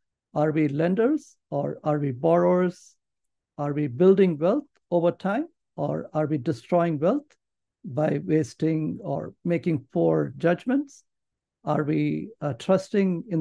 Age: 60-79